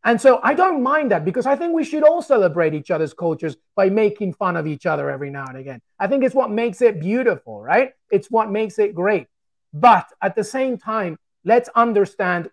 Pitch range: 160-220 Hz